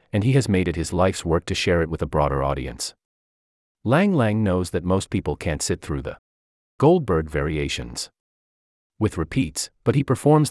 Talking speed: 185 wpm